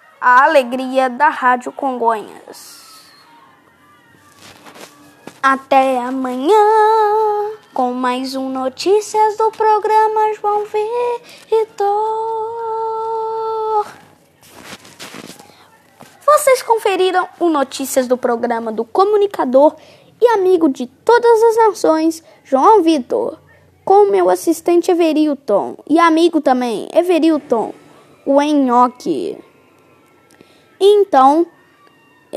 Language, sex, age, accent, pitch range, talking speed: Portuguese, female, 10-29, Brazilian, 270-405 Hz, 80 wpm